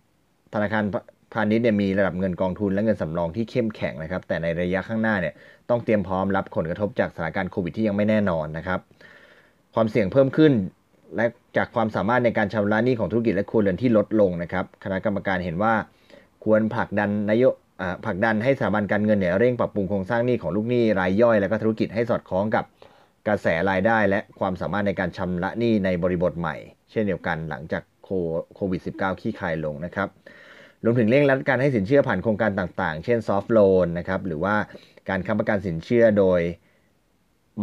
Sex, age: male, 20-39